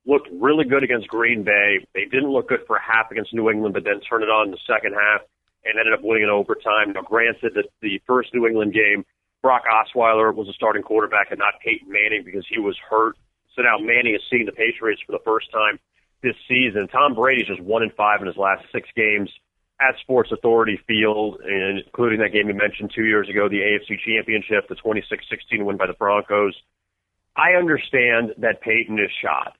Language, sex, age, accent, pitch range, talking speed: English, male, 40-59, American, 105-120 Hz, 215 wpm